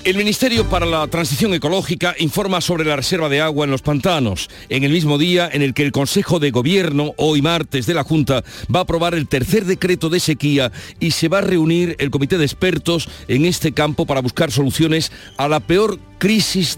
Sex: male